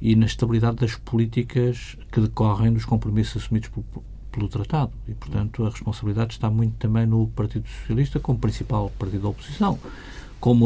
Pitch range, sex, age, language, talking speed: 110-125 Hz, male, 50-69, Portuguese, 165 wpm